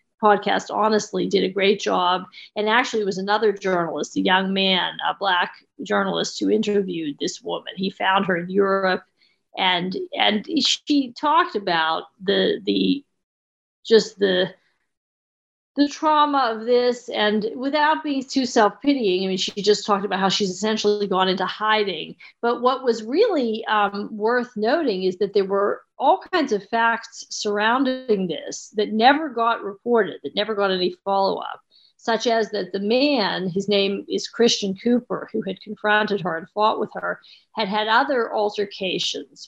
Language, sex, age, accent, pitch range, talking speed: English, female, 50-69, American, 190-230 Hz, 160 wpm